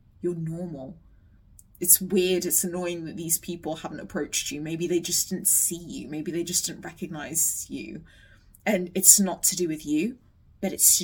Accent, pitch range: British, 150-180 Hz